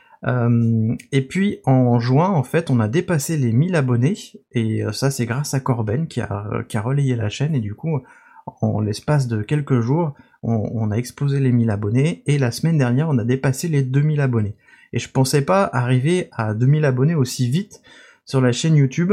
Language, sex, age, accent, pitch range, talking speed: French, male, 30-49, French, 115-140 Hz, 210 wpm